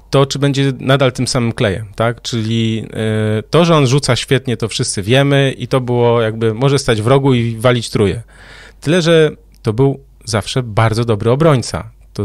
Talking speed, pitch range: 180 wpm, 115-140 Hz